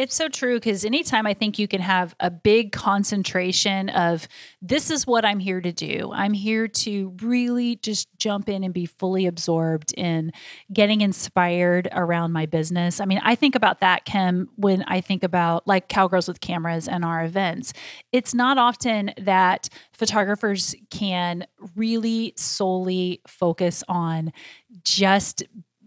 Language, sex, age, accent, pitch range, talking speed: English, female, 30-49, American, 180-210 Hz, 160 wpm